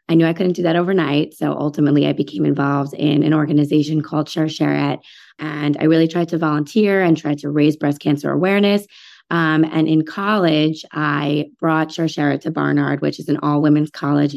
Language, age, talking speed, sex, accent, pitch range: English, 20-39, 190 wpm, female, American, 150-170 Hz